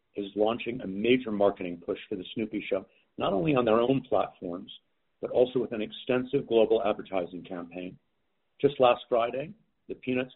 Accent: American